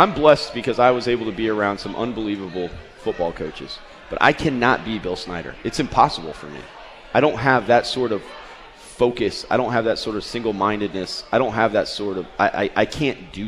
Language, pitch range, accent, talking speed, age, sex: English, 90-110 Hz, American, 220 wpm, 30-49, male